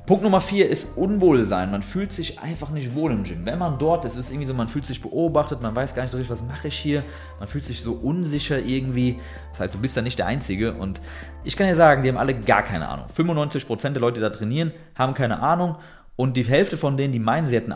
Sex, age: male, 30-49